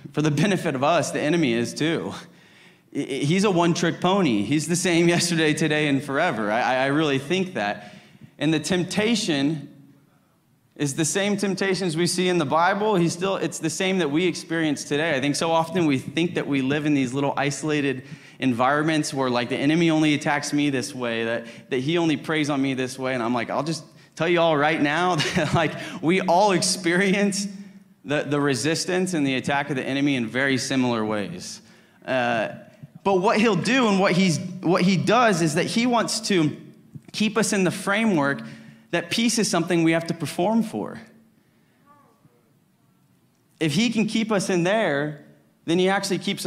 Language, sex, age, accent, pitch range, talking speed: English, male, 30-49, American, 140-180 Hz, 190 wpm